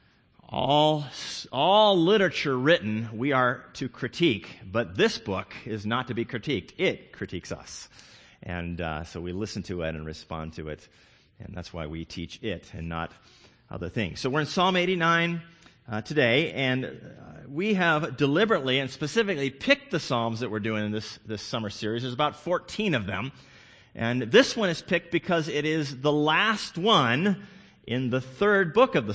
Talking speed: 180 wpm